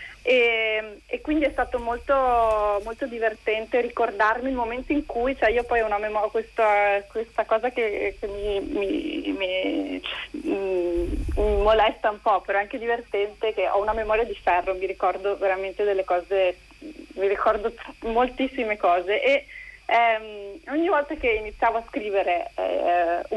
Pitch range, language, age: 195-245 Hz, Italian, 30-49